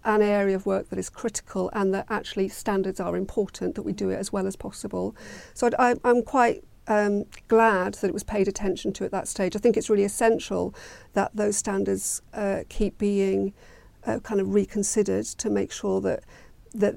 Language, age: English, 40-59